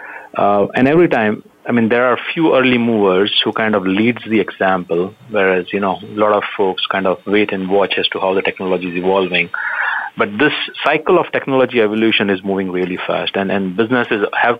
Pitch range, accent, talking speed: 95-110 Hz, Indian, 210 wpm